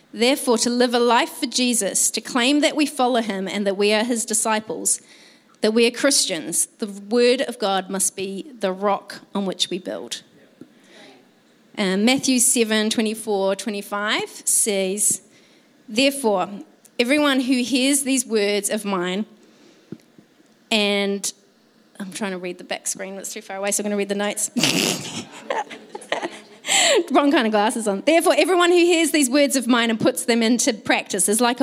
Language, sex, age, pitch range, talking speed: English, female, 30-49, 205-270 Hz, 165 wpm